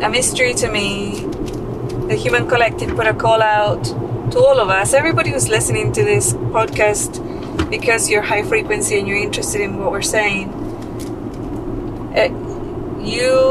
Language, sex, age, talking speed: English, female, 20-39, 145 wpm